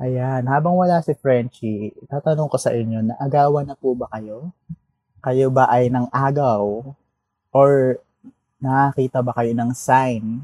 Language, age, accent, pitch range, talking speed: Filipino, 20-39, native, 115-140 Hz, 150 wpm